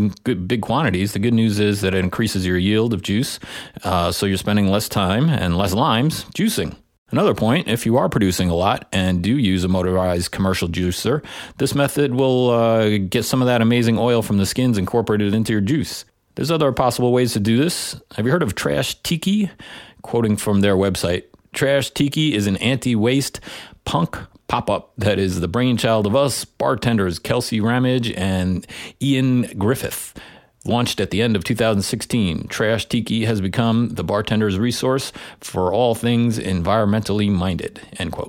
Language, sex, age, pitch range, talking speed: English, male, 30-49, 95-120 Hz, 170 wpm